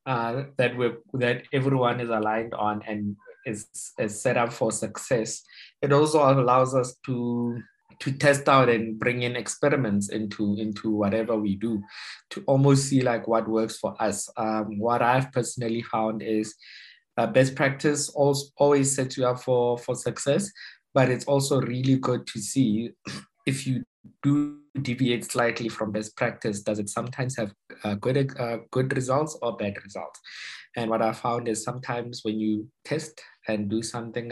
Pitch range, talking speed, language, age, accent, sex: 115-135 Hz, 165 wpm, English, 20-39, South African, male